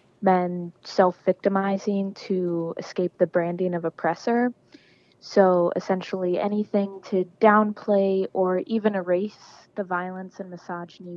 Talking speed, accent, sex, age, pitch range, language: 105 wpm, American, female, 20-39, 170-200 Hz, English